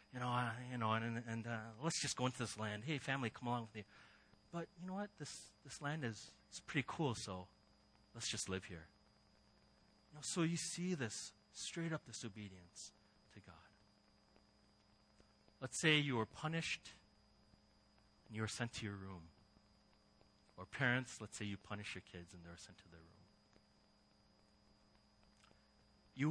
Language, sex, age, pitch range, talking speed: English, male, 40-59, 105-135 Hz, 175 wpm